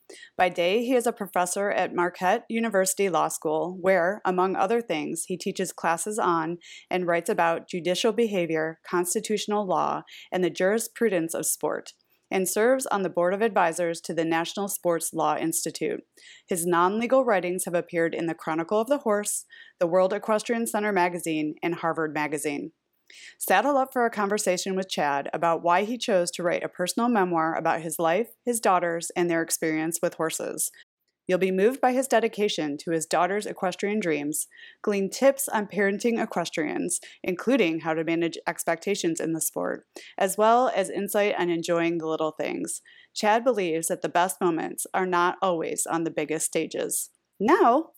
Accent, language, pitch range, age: American, English, 165-215 Hz, 30-49